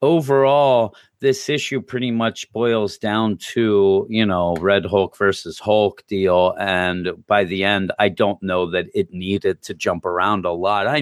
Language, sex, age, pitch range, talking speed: English, male, 40-59, 90-125 Hz, 170 wpm